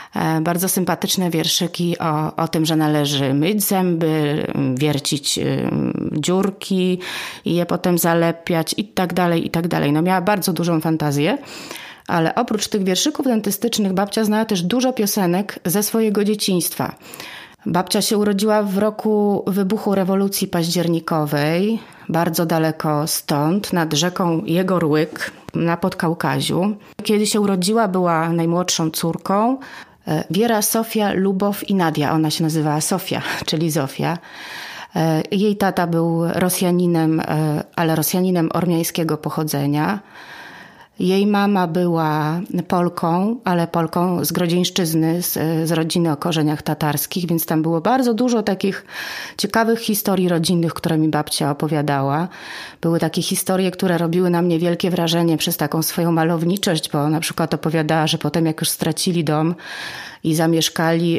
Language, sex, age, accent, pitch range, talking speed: Polish, female, 30-49, native, 160-195 Hz, 130 wpm